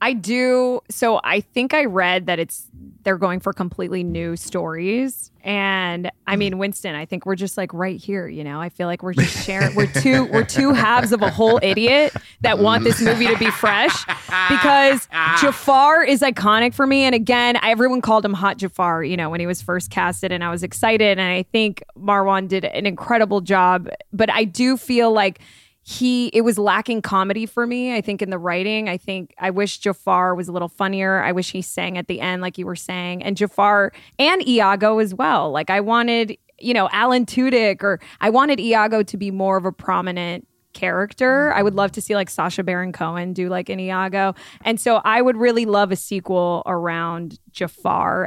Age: 20-39